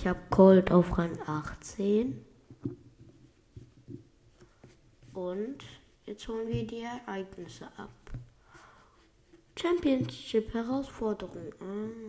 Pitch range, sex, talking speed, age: 125-200 Hz, female, 75 wpm, 20-39